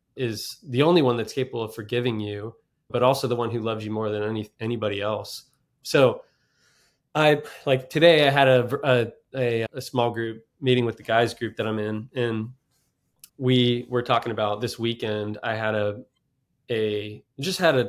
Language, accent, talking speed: English, American, 180 wpm